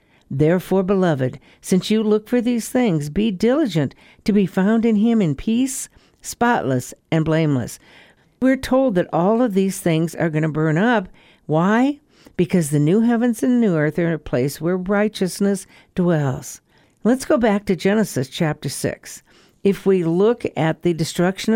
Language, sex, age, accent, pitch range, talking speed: English, female, 60-79, American, 160-220 Hz, 165 wpm